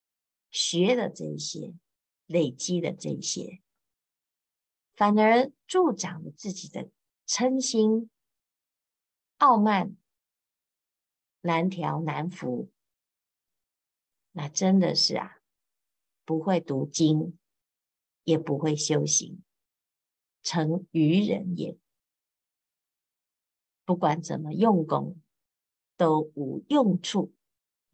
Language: Chinese